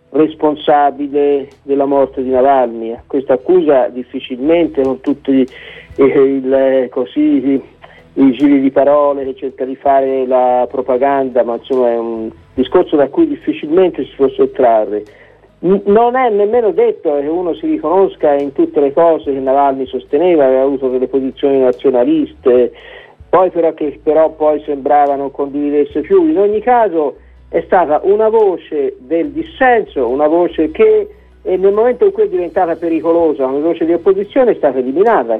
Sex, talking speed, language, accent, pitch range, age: male, 150 wpm, Italian, native, 135-220 Hz, 50-69